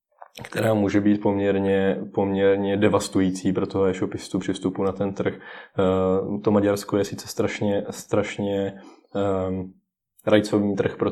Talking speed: 125 wpm